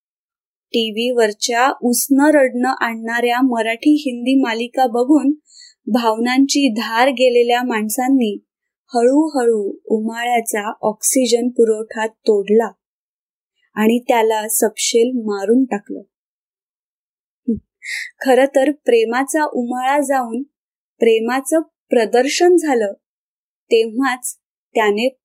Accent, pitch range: native, 225-280 Hz